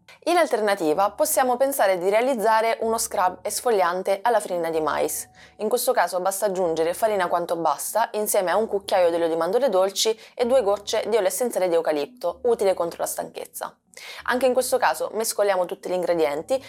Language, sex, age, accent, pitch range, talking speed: Italian, female, 20-39, native, 180-235 Hz, 180 wpm